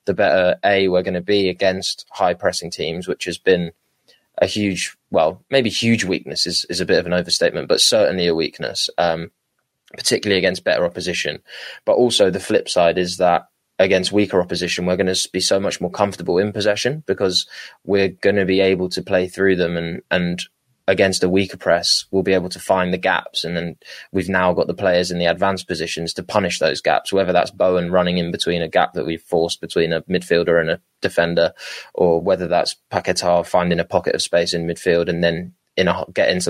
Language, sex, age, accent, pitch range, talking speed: English, male, 20-39, British, 85-95 Hz, 205 wpm